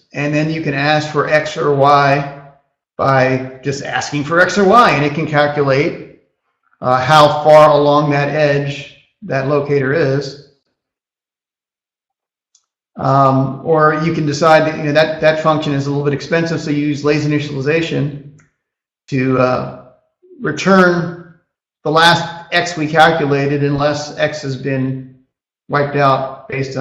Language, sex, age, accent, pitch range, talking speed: English, male, 40-59, American, 135-155 Hz, 140 wpm